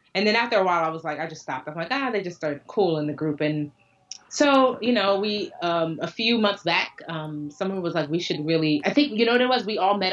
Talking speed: 285 wpm